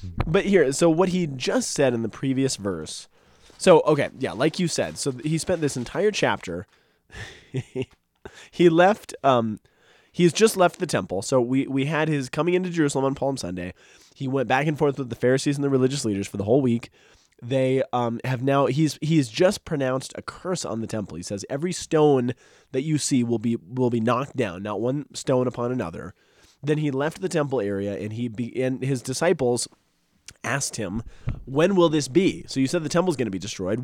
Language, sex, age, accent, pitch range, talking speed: English, male, 20-39, American, 120-155 Hz, 205 wpm